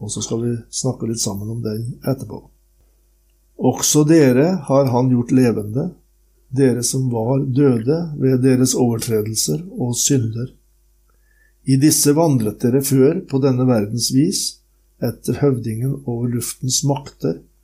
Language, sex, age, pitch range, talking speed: English, male, 60-79, 115-135 Hz, 135 wpm